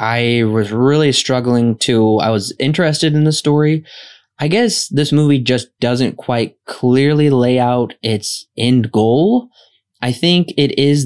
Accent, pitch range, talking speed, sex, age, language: American, 115-140 Hz, 150 wpm, male, 20-39, English